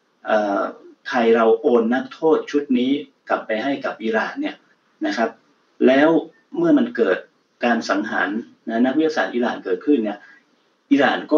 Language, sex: Thai, male